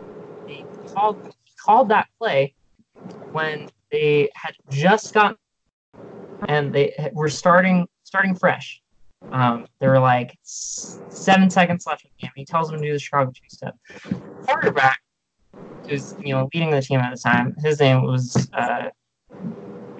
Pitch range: 130-180 Hz